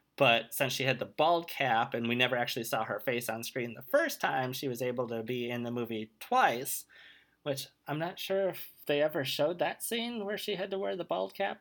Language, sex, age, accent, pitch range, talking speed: English, male, 20-39, American, 120-160 Hz, 240 wpm